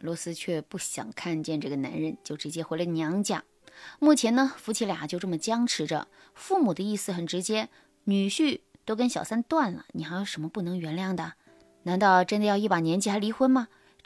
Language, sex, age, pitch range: Chinese, female, 20-39, 170-270 Hz